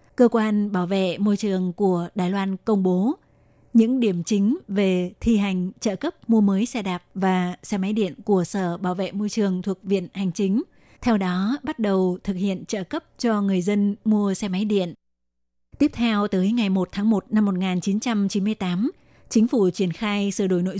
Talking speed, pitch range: 195 wpm, 190-225 Hz